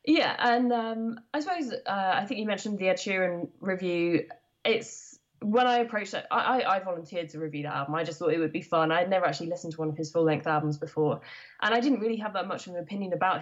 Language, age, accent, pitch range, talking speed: English, 20-39, British, 155-200 Hz, 250 wpm